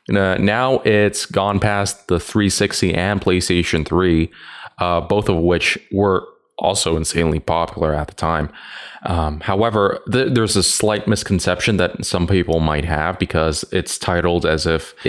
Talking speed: 145 wpm